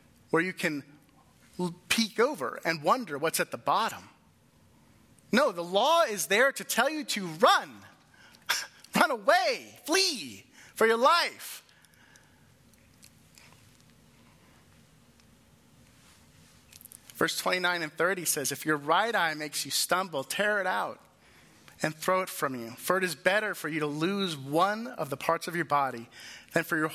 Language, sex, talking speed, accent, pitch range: English, male, 145 wpm, American, 145-195 Hz